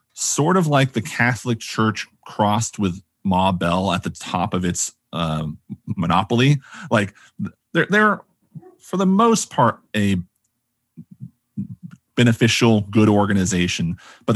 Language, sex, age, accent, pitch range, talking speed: English, male, 30-49, American, 90-115 Hz, 120 wpm